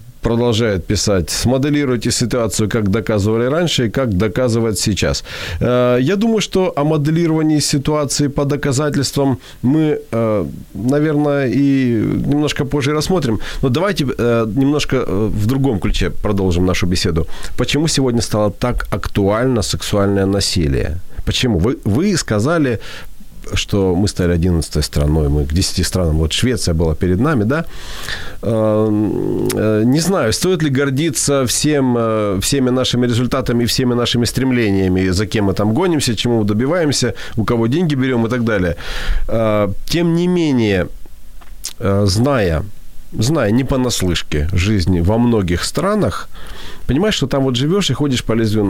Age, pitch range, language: 40-59, 95-140 Hz, Ukrainian